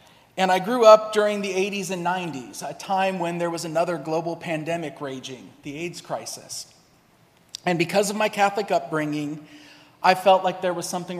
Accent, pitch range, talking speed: American, 155-200 Hz, 175 wpm